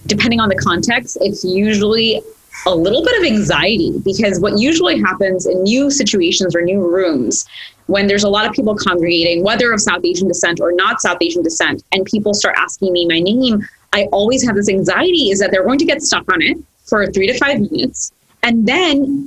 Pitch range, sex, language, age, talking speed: 190-255 Hz, female, English, 20-39, 205 wpm